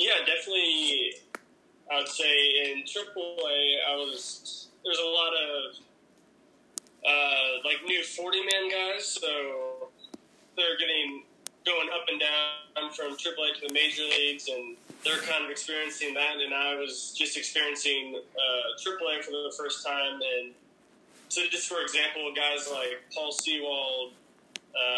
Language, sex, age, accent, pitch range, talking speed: English, male, 20-39, American, 140-175 Hz, 140 wpm